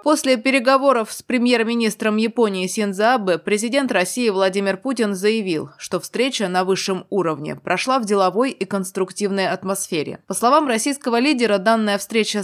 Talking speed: 135 wpm